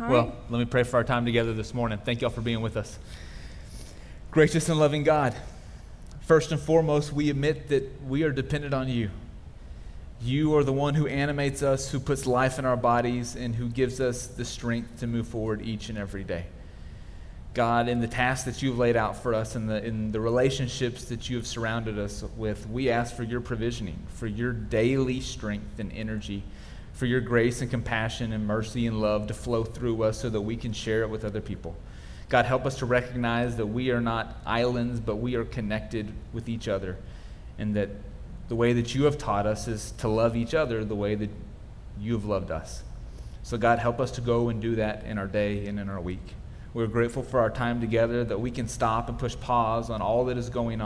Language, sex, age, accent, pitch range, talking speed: English, male, 30-49, American, 105-125 Hz, 215 wpm